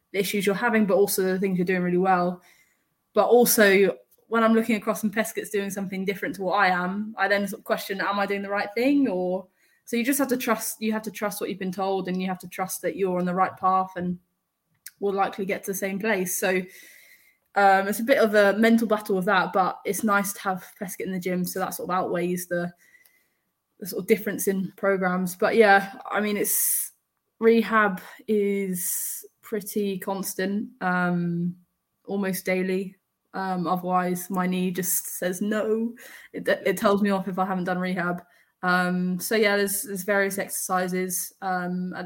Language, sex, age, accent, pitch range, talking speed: English, female, 10-29, British, 185-210 Hz, 205 wpm